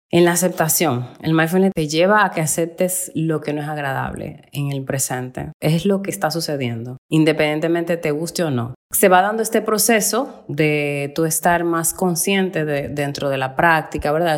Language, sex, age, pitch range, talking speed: Spanish, female, 30-49, 150-190 Hz, 185 wpm